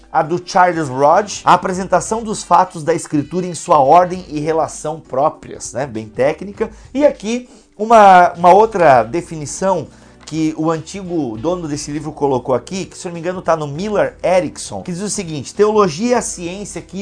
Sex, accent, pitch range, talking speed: male, Brazilian, 160-210 Hz, 185 wpm